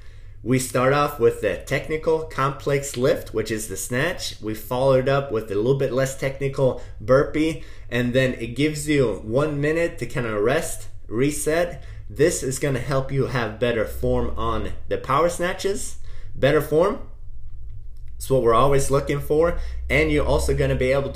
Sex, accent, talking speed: male, American, 180 wpm